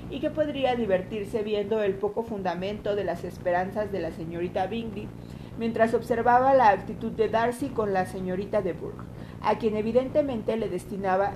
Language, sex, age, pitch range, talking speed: Spanish, female, 50-69, 185-225 Hz, 165 wpm